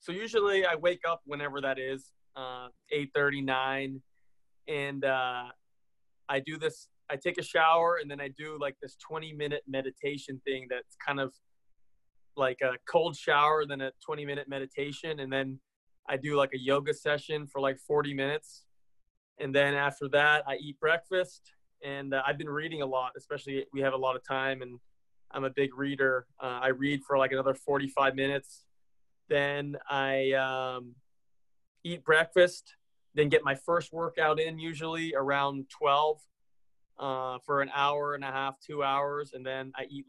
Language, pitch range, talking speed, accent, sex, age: English, 135-150 Hz, 175 wpm, American, male, 20-39